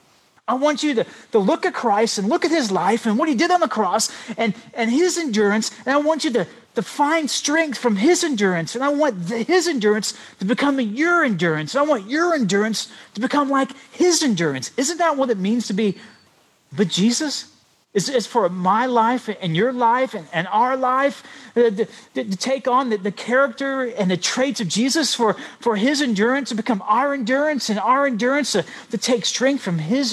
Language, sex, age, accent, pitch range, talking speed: English, male, 40-59, American, 195-265 Hz, 195 wpm